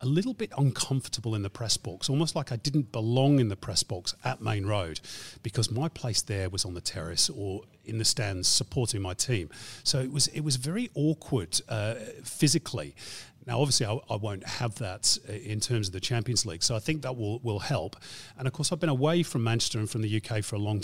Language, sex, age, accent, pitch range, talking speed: English, male, 40-59, British, 105-140 Hz, 230 wpm